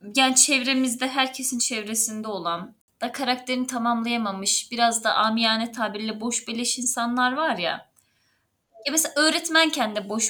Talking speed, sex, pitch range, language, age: 130 wpm, female, 225-285 Hz, Turkish, 20-39